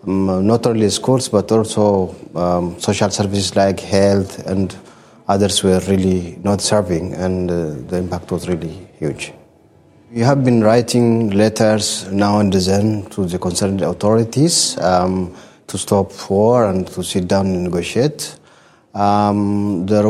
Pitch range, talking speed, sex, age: 95-110 Hz, 140 wpm, male, 30-49